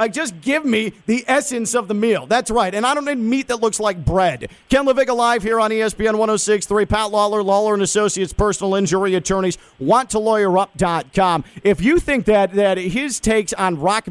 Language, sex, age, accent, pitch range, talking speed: English, male, 40-59, American, 180-220 Hz, 190 wpm